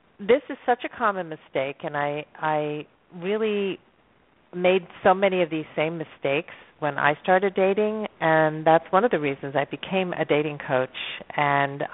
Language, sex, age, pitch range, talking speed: English, female, 40-59, 145-185 Hz, 165 wpm